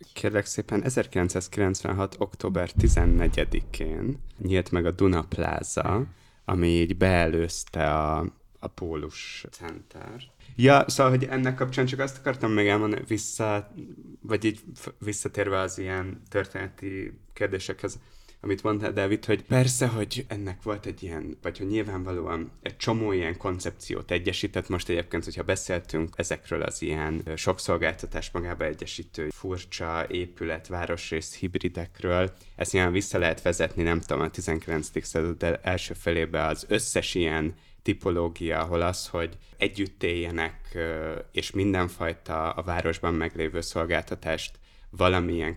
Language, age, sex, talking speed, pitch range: Hungarian, 20-39, male, 120 wpm, 85-100 Hz